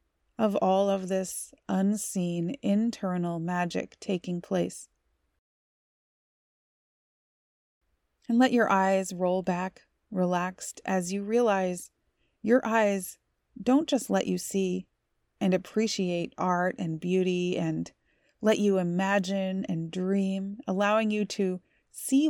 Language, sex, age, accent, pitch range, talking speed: English, female, 30-49, American, 185-215 Hz, 110 wpm